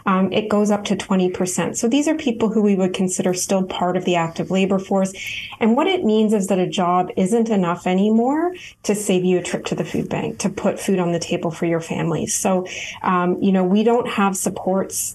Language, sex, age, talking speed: English, female, 30-49, 235 wpm